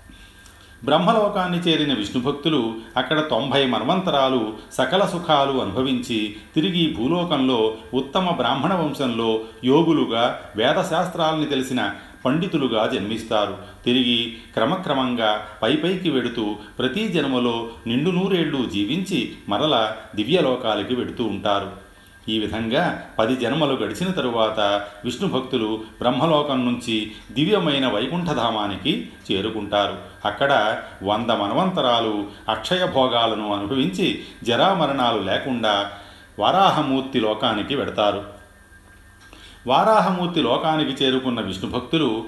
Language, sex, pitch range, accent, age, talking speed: Telugu, male, 105-140 Hz, native, 40-59, 80 wpm